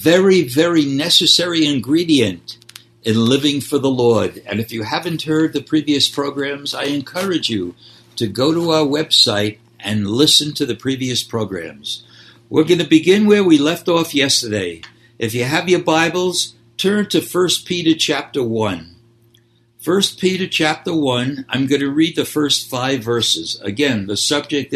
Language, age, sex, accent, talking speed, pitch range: English, 60-79, male, American, 160 wpm, 115-165 Hz